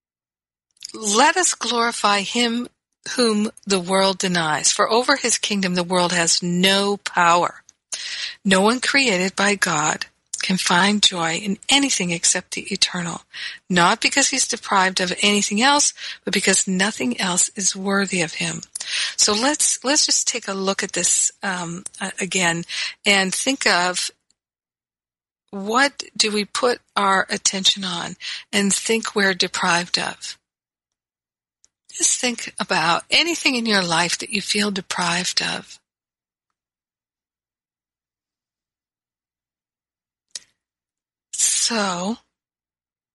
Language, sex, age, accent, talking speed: English, female, 50-69, American, 115 wpm